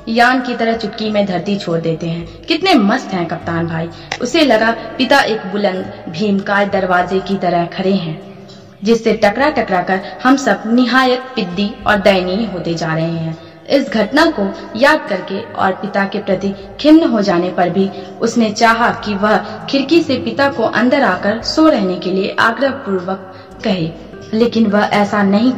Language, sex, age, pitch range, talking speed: Hindi, female, 20-39, 190-235 Hz, 170 wpm